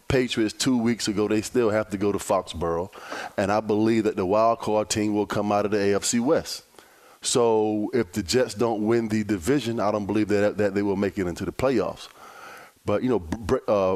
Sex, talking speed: male, 215 wpm